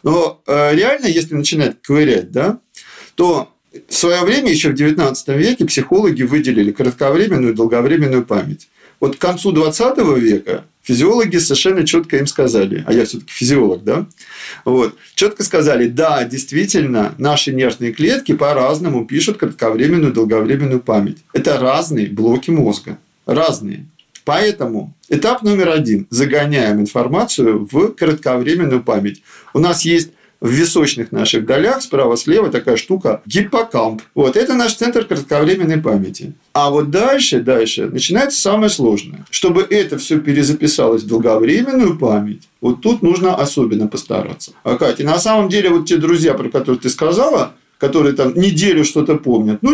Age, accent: 40-59, native